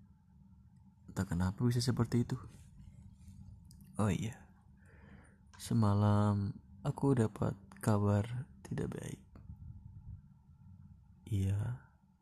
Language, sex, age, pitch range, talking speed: Indonesian, male, 20-39, 95-120 Hz, 70 wpm